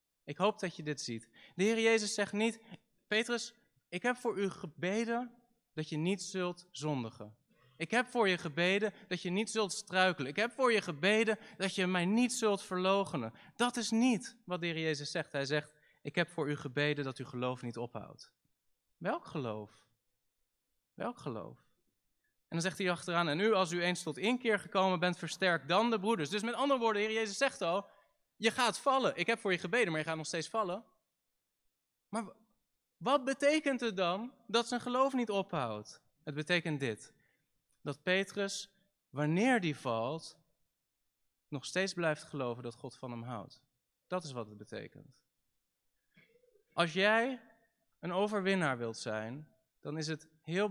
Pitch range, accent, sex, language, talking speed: 145-215 Hz, Dutch, male, Dutch, 175 wpm